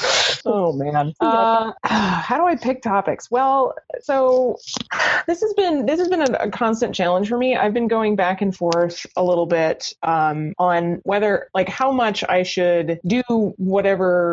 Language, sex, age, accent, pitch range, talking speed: English, female, 20-39, American, 160-210 Hz, 170 wpm